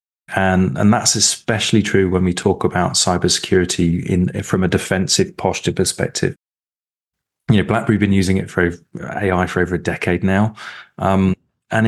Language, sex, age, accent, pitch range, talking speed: English, male, 30-49, British, 90-105 Hz, 155 wpm